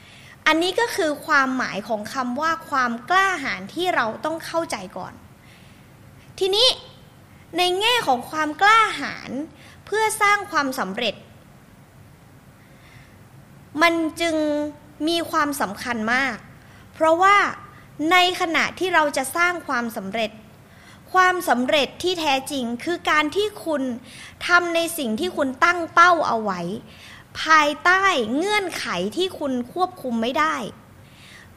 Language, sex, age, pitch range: Thai, female, 20-39, 265-355 Hz